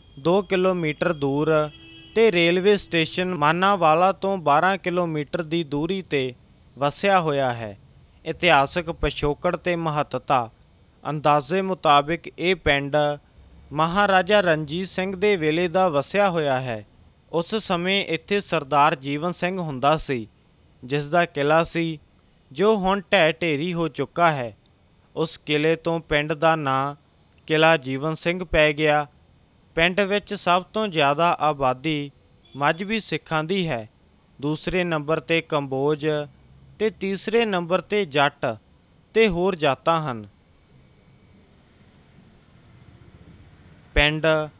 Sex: male